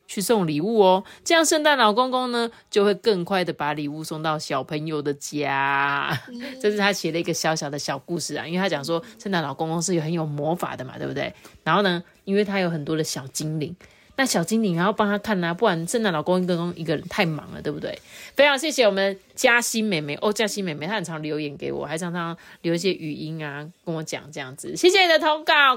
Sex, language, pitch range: female, Chinese, 160-235 Hz